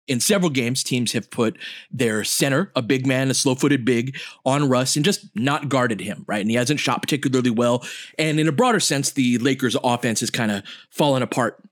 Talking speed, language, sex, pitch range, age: 210 wpm, English, male, 120-155 Hz, 30-49